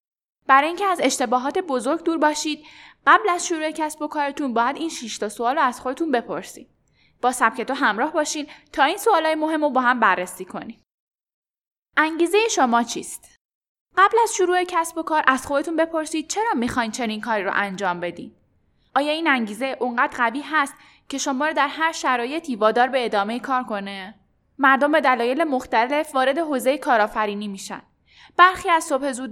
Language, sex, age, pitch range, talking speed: Persian, female, 10-29, 230-305 Hz, 170 wpm